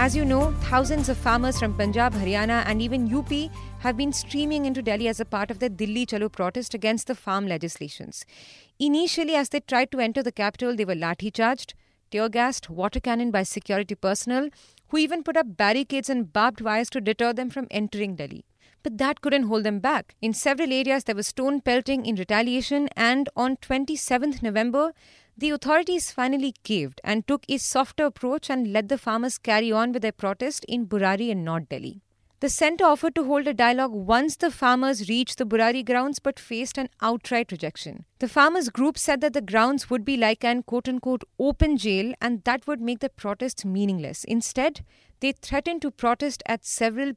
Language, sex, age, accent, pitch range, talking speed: English, female, 30-49, Indian, 220-275 Hz, 190 wpm